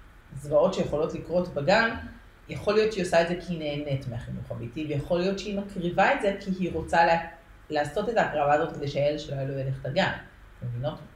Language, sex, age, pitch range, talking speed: Hebrew, female, 40-59, 140-175 Hz, 195 wpm